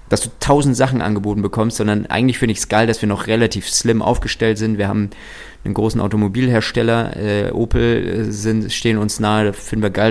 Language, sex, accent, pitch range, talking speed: German, male, German, 100-115 Hz, 200 wpm